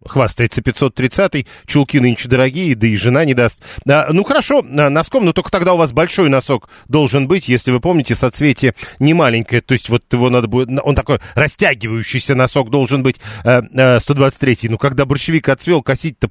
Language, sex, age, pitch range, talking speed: Russian, male, 40-59, 125-160 Hz, 165 wpm